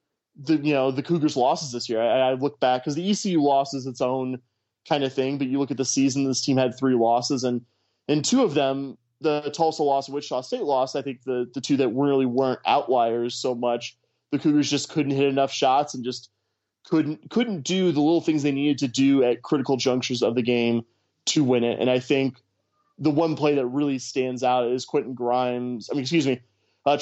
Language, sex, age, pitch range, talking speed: English, male, 20-39, 125-145 Hz, 225 wpm